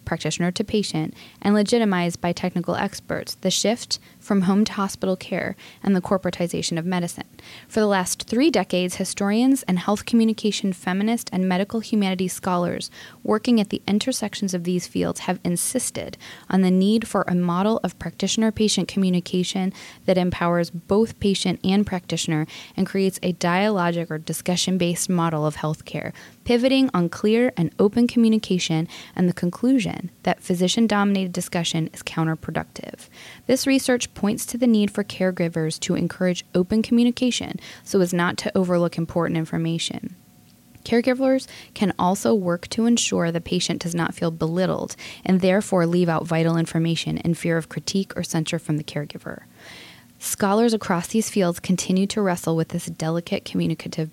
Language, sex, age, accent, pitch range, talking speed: English, female, 10-29, American, 170-210 Hz, 155 wpm